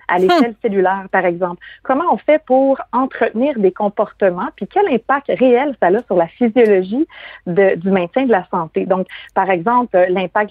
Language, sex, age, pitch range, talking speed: French, female, 30-49, 185-245 Hz, 175 wpm